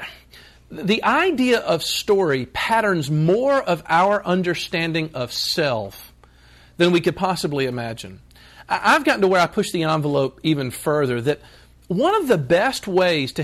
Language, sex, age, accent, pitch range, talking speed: English, male, 40-59, American, 130-200 Hz, 145 wpm